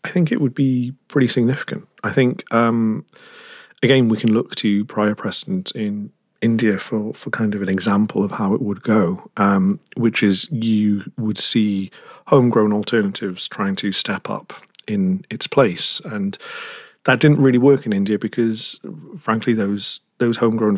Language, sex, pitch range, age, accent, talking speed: English, male, 110-135 Hz, 40-59, British, 165 wpm